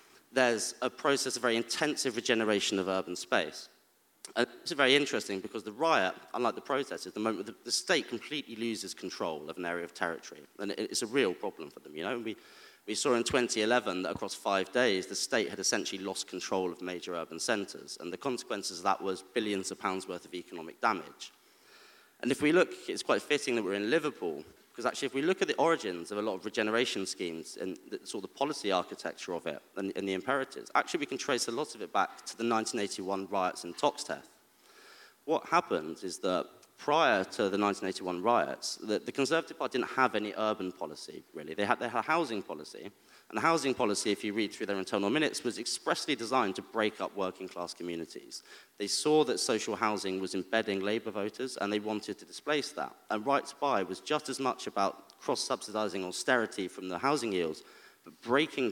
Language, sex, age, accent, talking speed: English, male, 30-49, British, 205 wpm